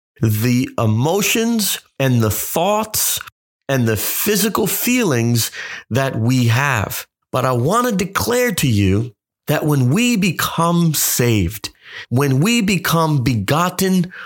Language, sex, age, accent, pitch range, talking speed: English, male, 30-49, American, 125-180 Hz, 120 wpm